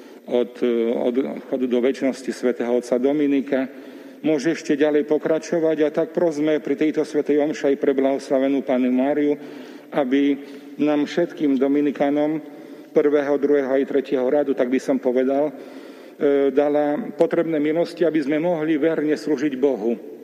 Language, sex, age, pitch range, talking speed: Slovak, male, 40-59, 135-155 Hz, 135 wpm